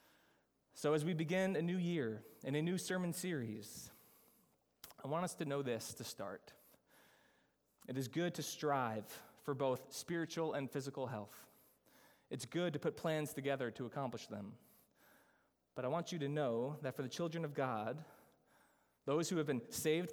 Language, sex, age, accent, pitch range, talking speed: English, male, 20-39, American, 140-180 Hz, 170 wpm